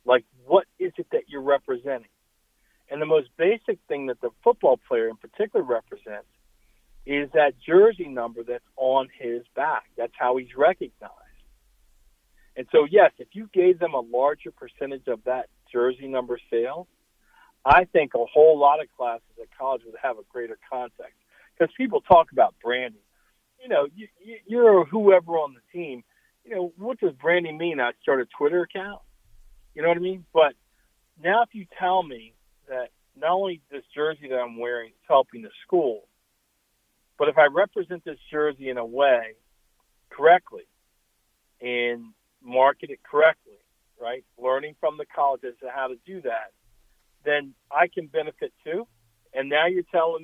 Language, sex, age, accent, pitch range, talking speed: English, male, 50-69, American, 125-200 Hz, 165 wpm